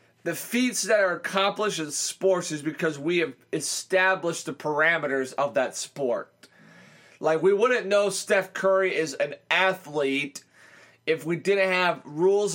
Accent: American